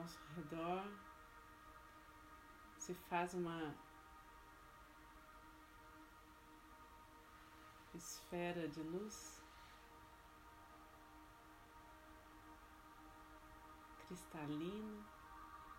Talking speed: 40 wpm